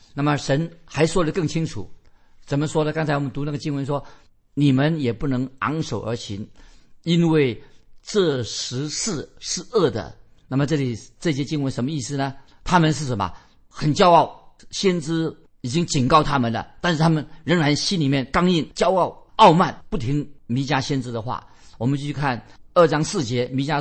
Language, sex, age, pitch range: Chinese, male, 50-69, 120-155 Hz